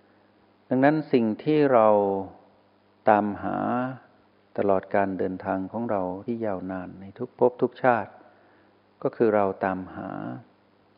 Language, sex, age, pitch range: Thai, male, 60-79, 100-115 Hz